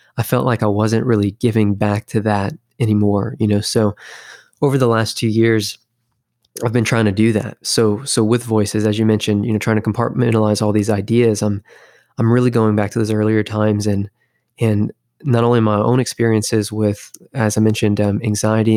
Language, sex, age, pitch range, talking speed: English, male, 20-39, 105-115 Hz, 200 wpm